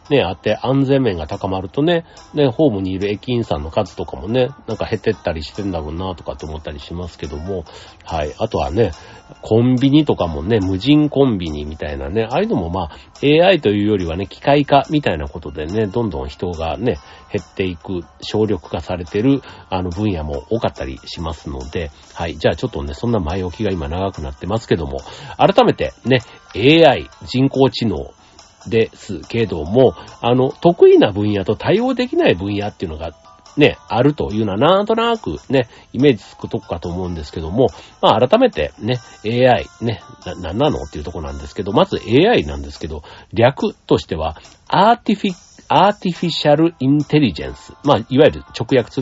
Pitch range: 85-135 Hz